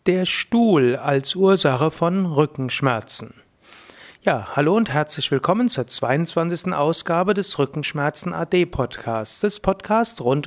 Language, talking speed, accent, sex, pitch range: German, 120 wpm, German, male, 145-190 Hz